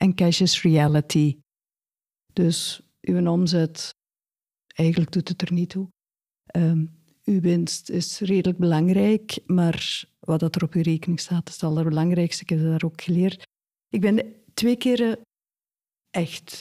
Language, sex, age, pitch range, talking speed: Dutch, female, 50-69, 165-200 Hz, 140 wpm